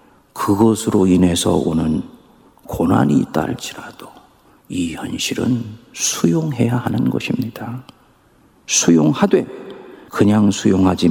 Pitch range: 95-150 Hz